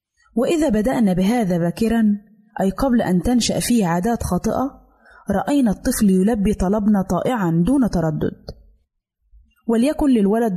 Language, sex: Arabic, female